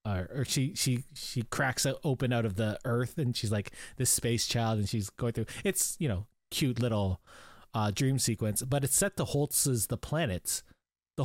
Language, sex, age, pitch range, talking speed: English, male, 20-39, 110-150 Hz, 195 wpm